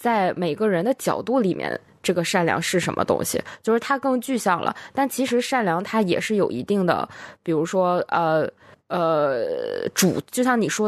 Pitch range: 175-235 Hz